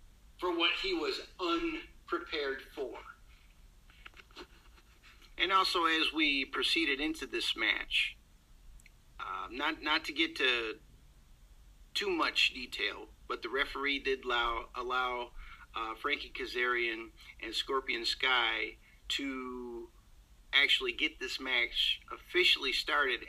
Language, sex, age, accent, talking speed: English, male, 50-69, American, 110 wpm